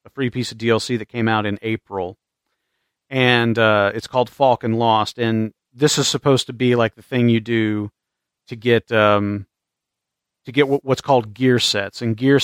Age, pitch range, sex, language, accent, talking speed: 40-59, 110-130 Hz, male, English, American, 185 wpm